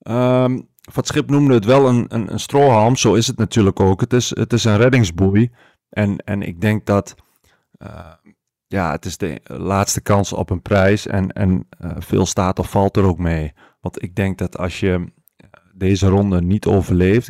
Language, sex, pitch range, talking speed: Dutch, male, 85-105 Hz, 190 wpm